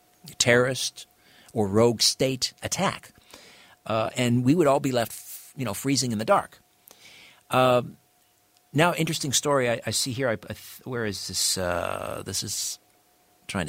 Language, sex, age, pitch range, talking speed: English, male, 50-69, 110-140 Hz, 160 wpm